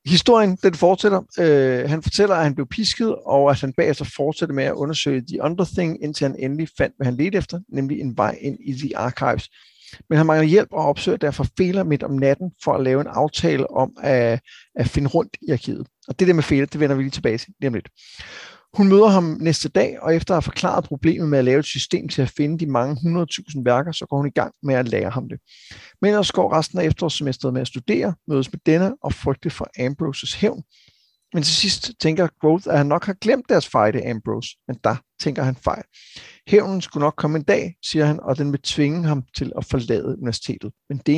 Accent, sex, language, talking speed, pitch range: native, male, Danish, 230 wpm, 135-170 Hz